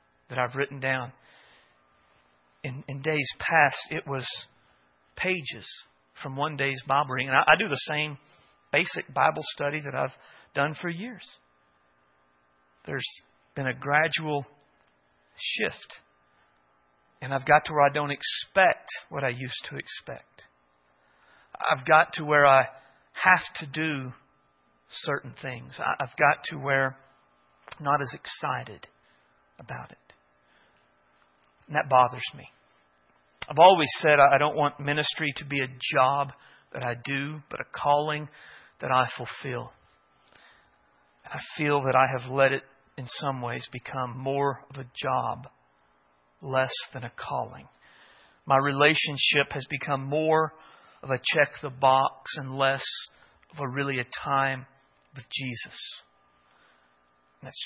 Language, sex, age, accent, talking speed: English, male, 40-59, American, 140 wpm